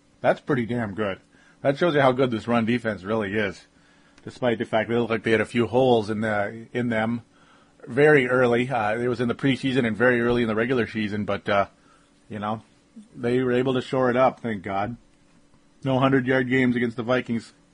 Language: English